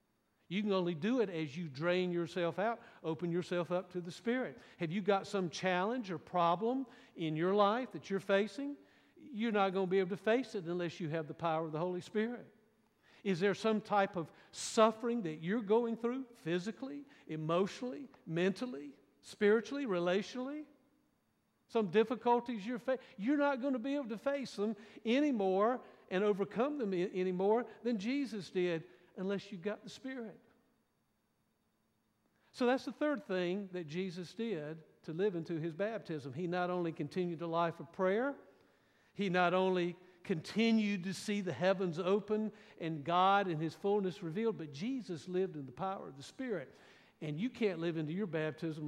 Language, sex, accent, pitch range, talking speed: English, male, American, 175-230 Hz, 170 wpm